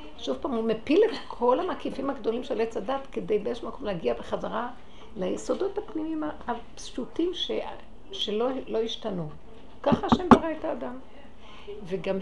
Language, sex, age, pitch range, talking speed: Hebrew, female, 60-79, 215-310 Hz, 140 wpm